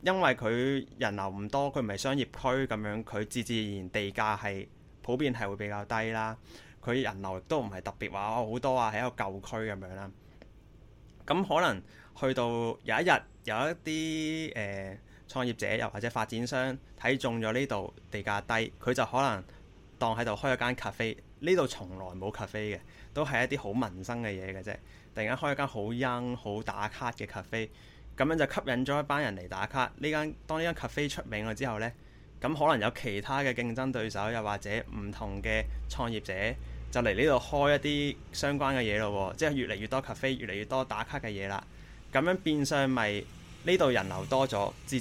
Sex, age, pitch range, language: male, 20-39, 105-130 Hz, Chinese